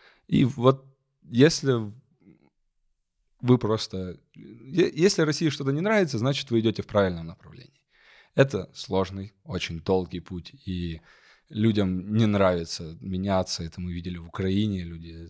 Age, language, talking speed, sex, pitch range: 20-39, Russian, 125 wpm, male, 90-120 Hz